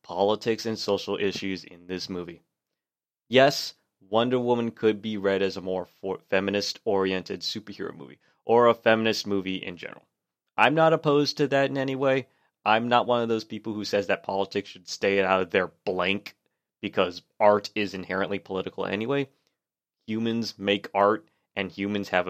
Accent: American